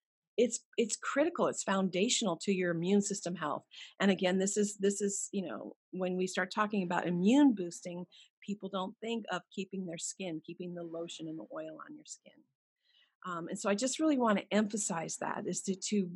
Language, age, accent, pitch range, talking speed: English, 50-69, American, 180-230 Hz, 200 wpm